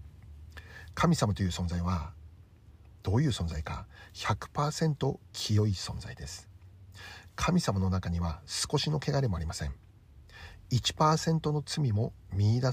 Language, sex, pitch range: Japanese, male, 90-110 Hz